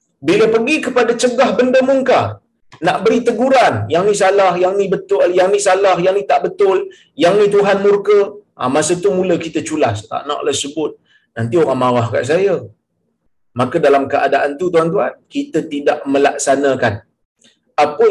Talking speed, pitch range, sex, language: 160 wpm, 135-195 Hz, male, Malayalam